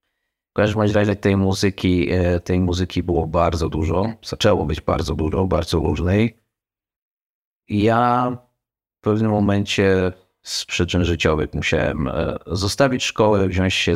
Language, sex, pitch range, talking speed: Polish, male, 85-100 Hz, 120 wpm